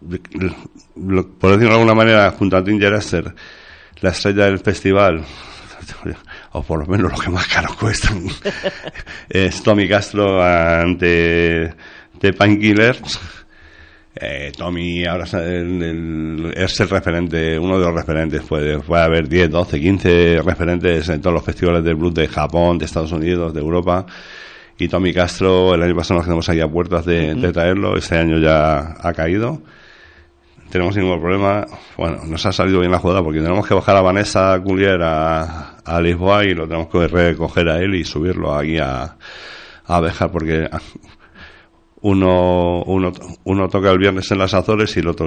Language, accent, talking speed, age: Spanish, Spanish, 155 wpm, 60-79